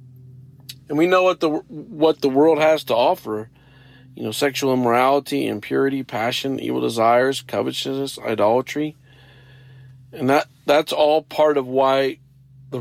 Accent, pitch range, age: American, 125-145 Hz, 50-69